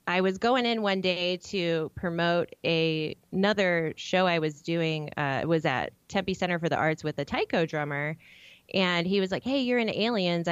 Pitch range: 155-195 Hz